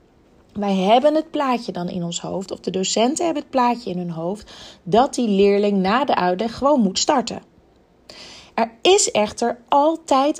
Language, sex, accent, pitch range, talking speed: Dutch, female, Dutch, 195-260 Hz, 175 wpm